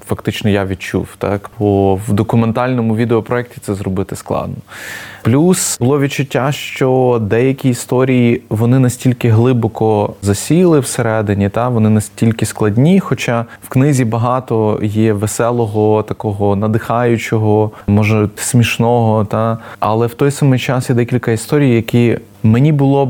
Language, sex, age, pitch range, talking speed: Ukrainian, male, 20-39, 105-125 Hz, 125 wpm